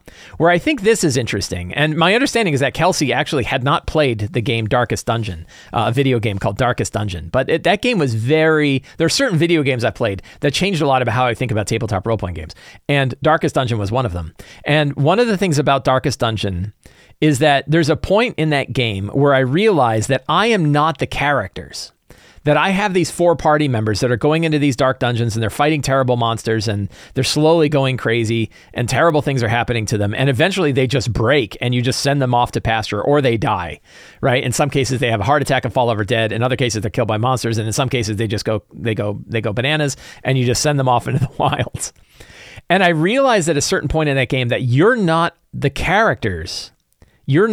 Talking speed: 235 wpm